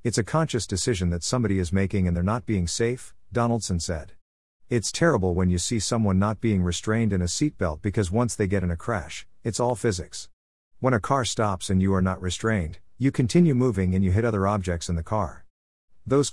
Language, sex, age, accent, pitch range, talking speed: English, male, 50-69, American, 90-115 Hz, 215 wpm